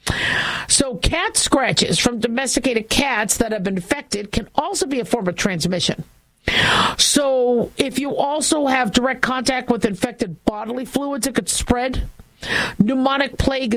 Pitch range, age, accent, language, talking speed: 210-255 Hz, 50-69, American, English, 145 wpm